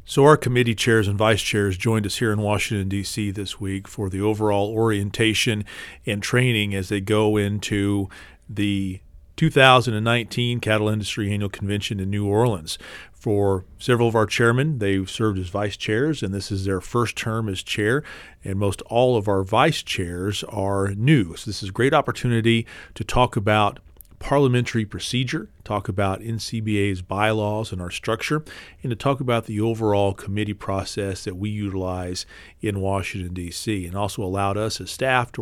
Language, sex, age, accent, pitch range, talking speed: English, male, 40-59, American, 100-115 Hz, 170 wpm